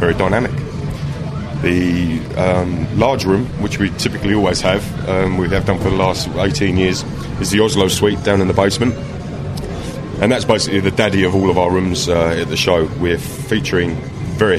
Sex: male